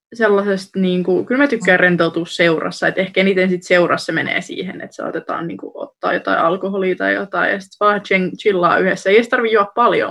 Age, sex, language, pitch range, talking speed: 20-39, female, Finnish, 180-220 Hz, 200 wpm